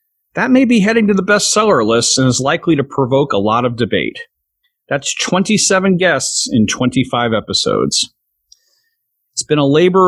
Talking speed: 160 wpm